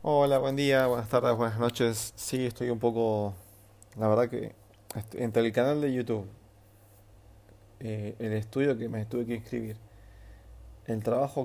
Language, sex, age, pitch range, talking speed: Spanish, male, 30-49, 105-125 Hz, 155 wpm